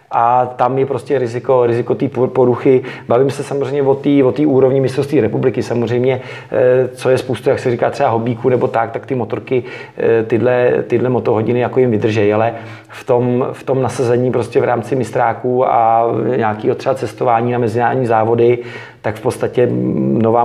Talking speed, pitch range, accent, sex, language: 170 wpm, 120-130 Hz, native, male, Czech